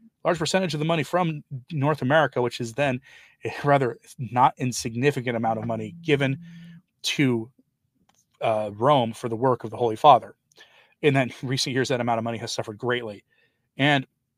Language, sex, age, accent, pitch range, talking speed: English, male, 30-49, American, 115-145 Hz, 165 wpm